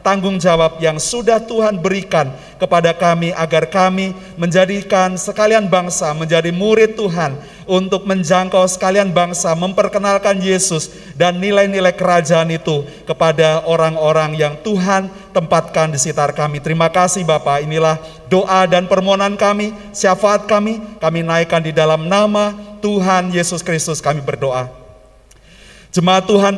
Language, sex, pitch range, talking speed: Indonesian, male, 165-200 Hz, 125 wpm